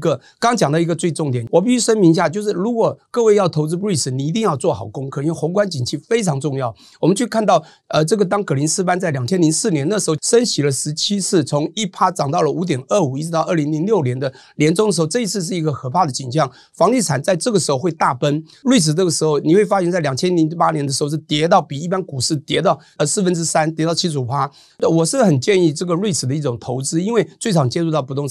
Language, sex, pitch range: Chinese, male, 145-190 Hz